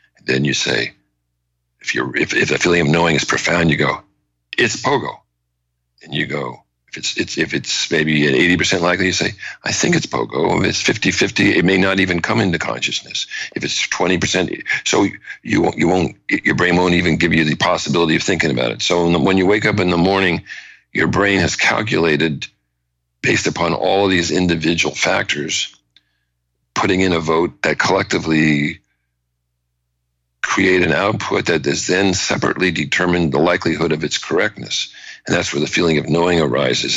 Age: 60-79